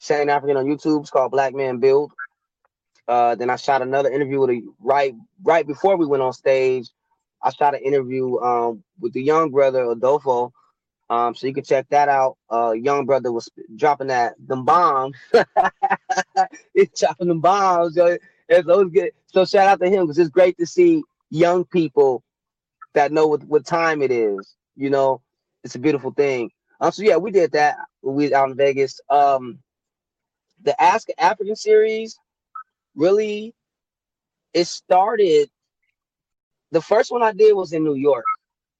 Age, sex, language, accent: 20-39, male, English, American